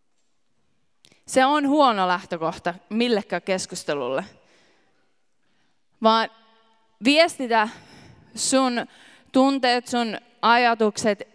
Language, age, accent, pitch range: Finnish, 20-39, native, 200-255 Hz